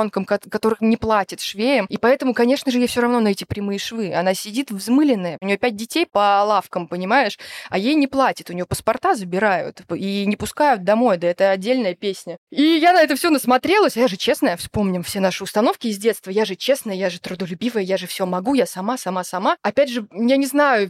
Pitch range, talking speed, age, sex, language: 200-260 Hz, 220 wpm, 20-39, female, Russian